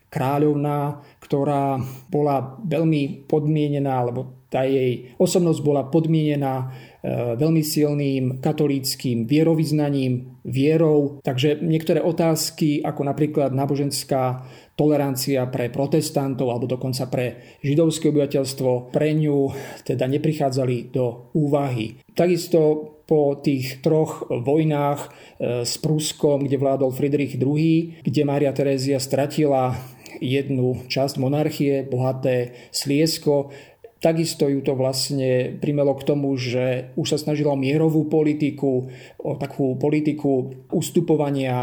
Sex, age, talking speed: male, 40-59, 105 wpm